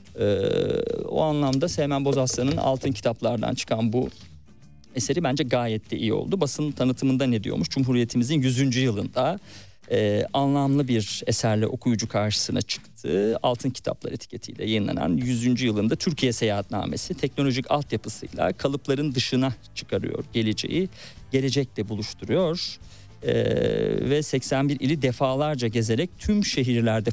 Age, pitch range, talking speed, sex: 50-69, 110-140 Hz, 115 wpm, male